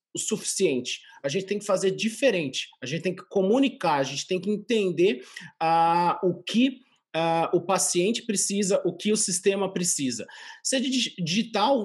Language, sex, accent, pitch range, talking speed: Portuguese, male, Brazilian, 170-210 Hz, 165 wpm